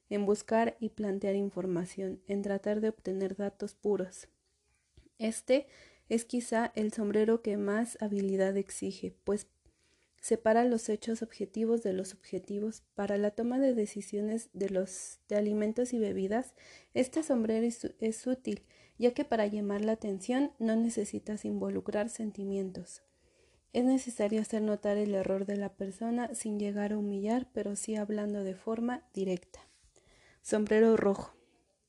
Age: 30-49